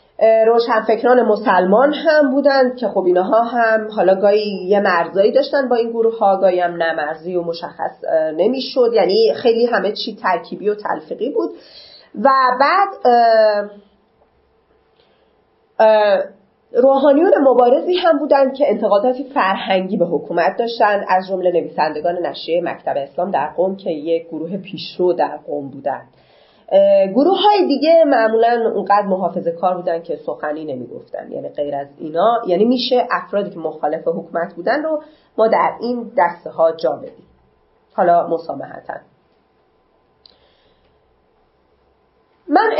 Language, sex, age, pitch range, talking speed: Persian, female, 30-49, 175-265 Hz, 125 wpm